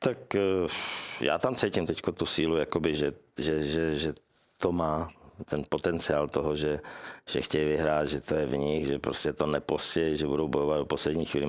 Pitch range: 75-85 Hz